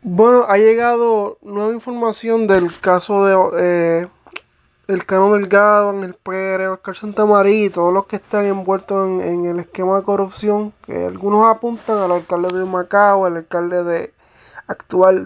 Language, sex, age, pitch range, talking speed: English, male, 20-39, 185-210 Hz, 155 wpm